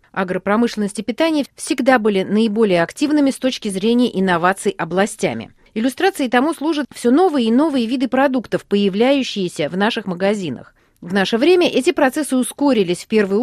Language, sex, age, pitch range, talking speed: Russian, female, 40-59, 200-260 Hz, 145 wpm